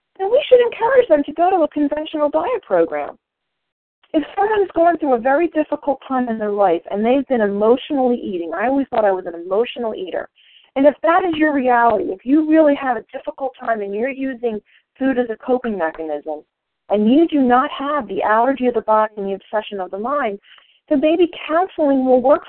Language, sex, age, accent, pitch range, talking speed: English, female, 40-59, American, 230-315 Hz, 210 wpm